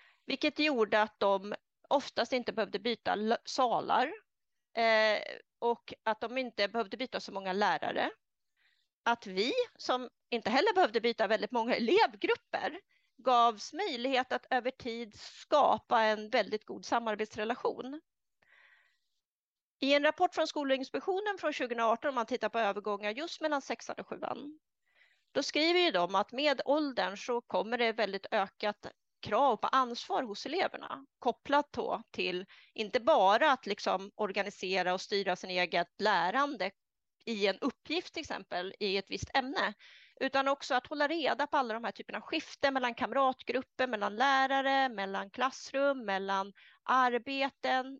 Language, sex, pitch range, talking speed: Swedish, female, 205-275 Hz, 140 wpm